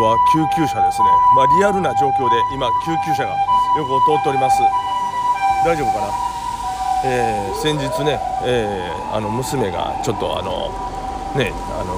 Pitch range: 105-145 Hz